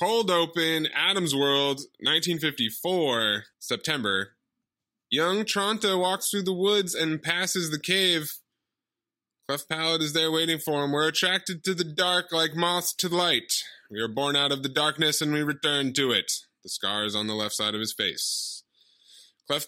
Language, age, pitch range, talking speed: English, 20-39, 125-175 Hz, 170 wpm